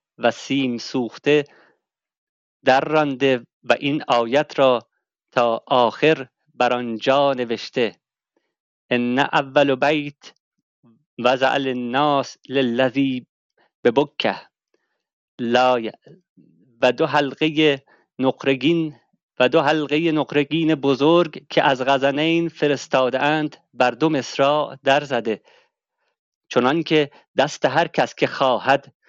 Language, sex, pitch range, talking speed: Persian, male, 130-155 Hz, 105 wpm